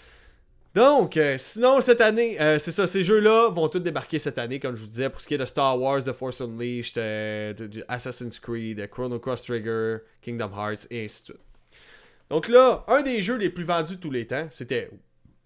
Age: 30-49